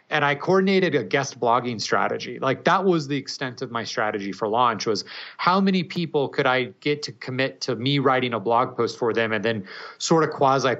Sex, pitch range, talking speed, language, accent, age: male, 120-165 Hz, 215 wpm, English, American, 30-49